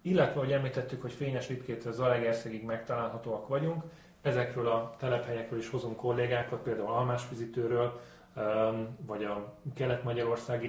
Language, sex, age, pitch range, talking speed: Hungarian, male, 30-49, 110-130 Hz, 125 wpm